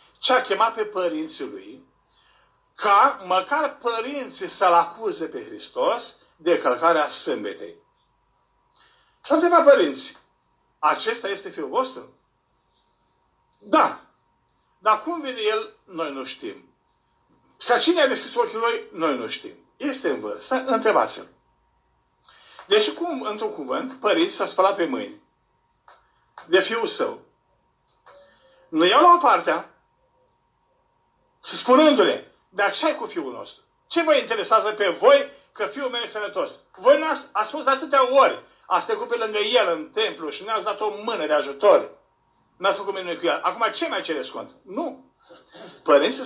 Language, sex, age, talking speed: Romanian, male, 50-69, 145 wpm